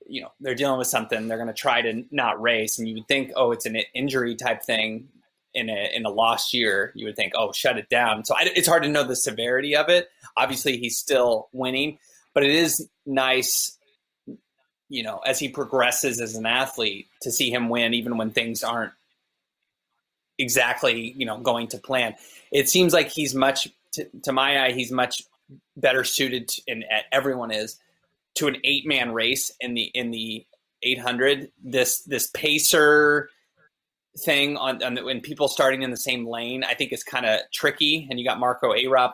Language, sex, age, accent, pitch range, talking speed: English, male, 20-39, American, 120-145 Hz, 195 wpm